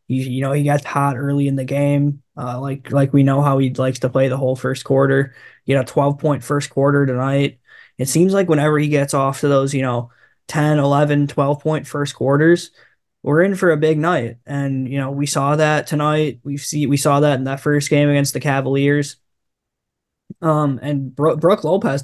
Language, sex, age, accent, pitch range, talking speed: English, male, 10-29, American, 135-150 Hz, 200 wpm